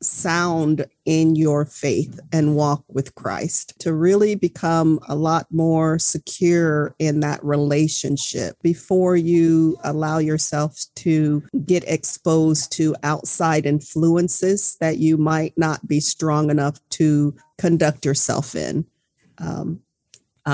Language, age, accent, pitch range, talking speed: English, 40-59, American, 150-170 Hz, 115 wpm